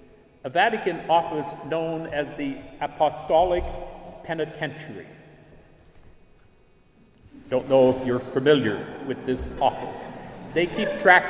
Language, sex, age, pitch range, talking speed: English, male, 50-69, 150-185 Hz, 100 wpm